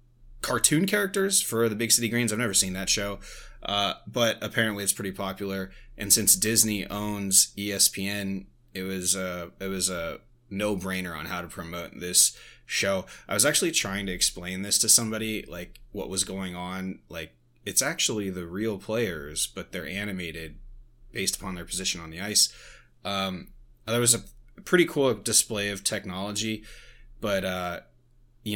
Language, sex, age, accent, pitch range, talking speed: English, male, 20-39, American, 95-110 Hz, 165 wpm